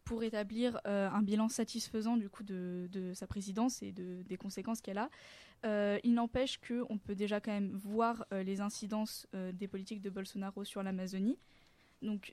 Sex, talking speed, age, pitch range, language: female, 185 wpm, 10-29, 195-230 Hz, French